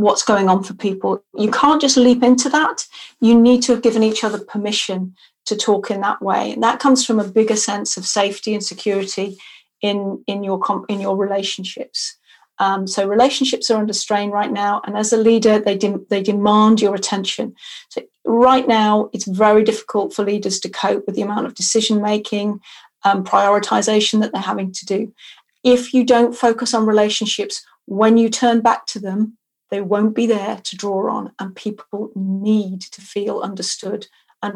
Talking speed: 185 wpm